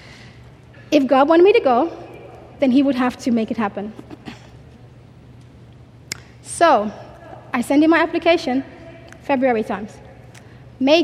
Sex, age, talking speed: female, 20-39, 125 wpm